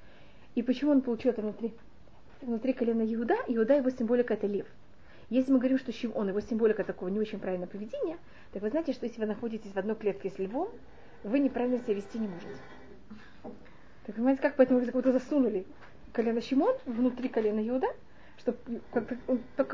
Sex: female